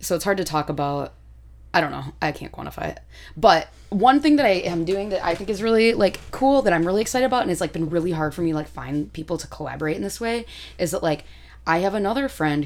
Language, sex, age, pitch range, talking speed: English, female, 20-39, 145-165 Hz, 260 wpm